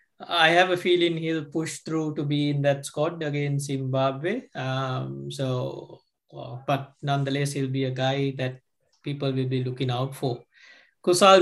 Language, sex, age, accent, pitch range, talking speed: English, male, 20-39, Indian, 135-155 Hz, 160 wpm